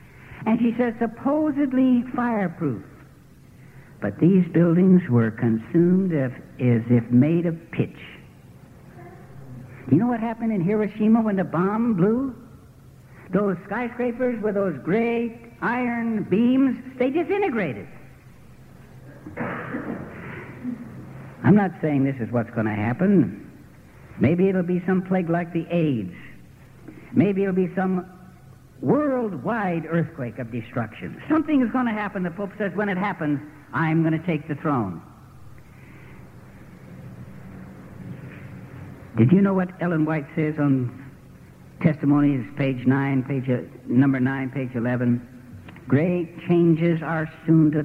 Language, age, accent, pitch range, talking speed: English, 60-79, American, 130-190 Hz, 120 wpm